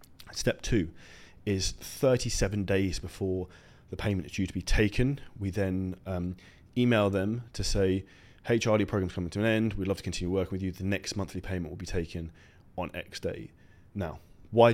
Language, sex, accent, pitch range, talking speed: English, male, British, 90-105 Hz, 190 wpm